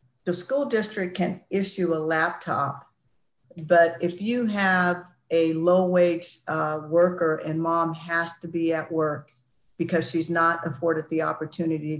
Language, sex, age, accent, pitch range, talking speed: English, female, 50-69, American, 155-175 Hz, 140 wpm